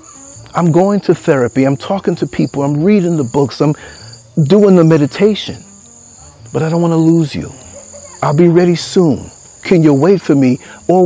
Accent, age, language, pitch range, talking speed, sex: American, 50-69, English, 95-140 Hz, 180 wpm, male